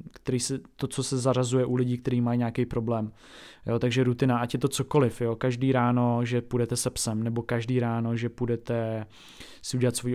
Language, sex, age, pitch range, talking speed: Czech, male, 20-39, 120-130 Hz, 200 wpm